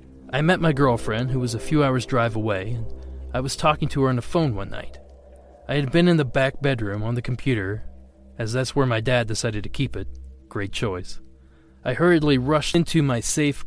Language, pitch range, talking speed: English, 85-130 Hz, 215 wpm